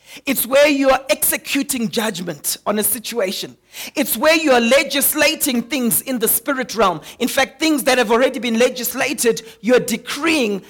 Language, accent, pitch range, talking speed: English, South African, 235-280 Hz, 170 wpm